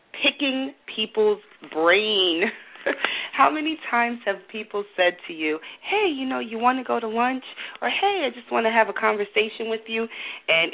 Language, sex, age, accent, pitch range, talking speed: English, female, 40-59, American, 175-260 Hz, 180 wpm